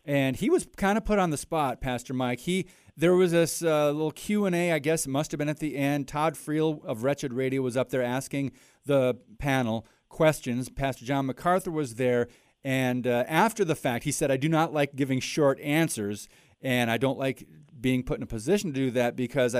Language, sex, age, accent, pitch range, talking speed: English, male, 40-59, American, 125-155 Hz, 225 wpm